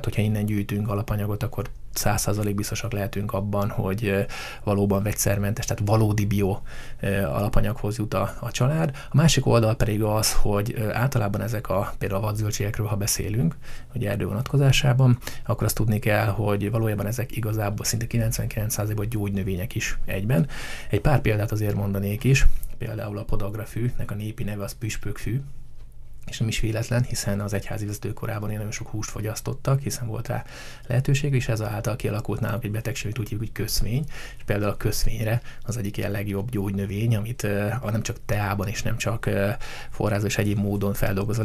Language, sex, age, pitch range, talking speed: Hungarian, male, 20-39, 100-115 Hz, 165 wpm